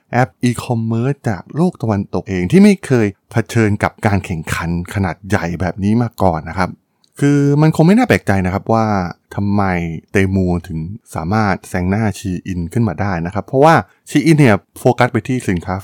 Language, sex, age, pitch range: Thai, male, 20-39, 90-125 Hz